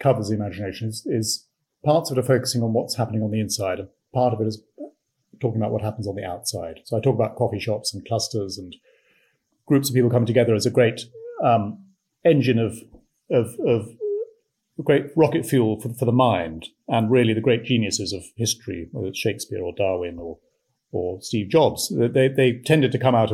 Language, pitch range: English, 110-130 Hz